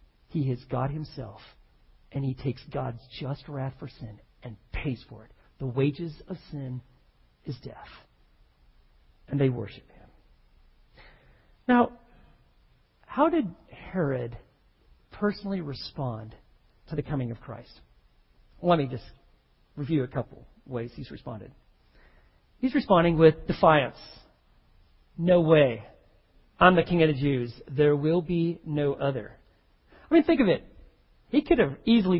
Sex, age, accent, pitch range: male, 40-59, American, 130-195 Hz